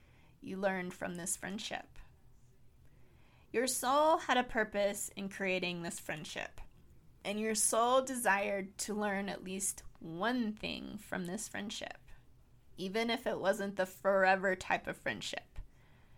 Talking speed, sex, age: 135 wpm, female, 20-39